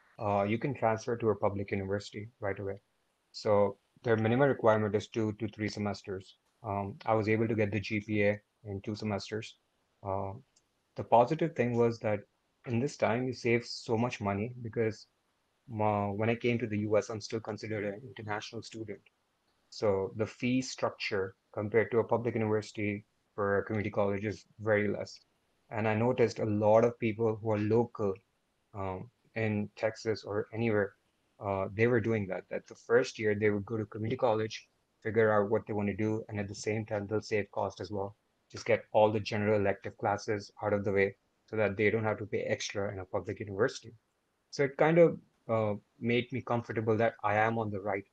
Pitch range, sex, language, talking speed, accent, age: 105-115 Hz, male, English, 195 wpm, Indian, 30-49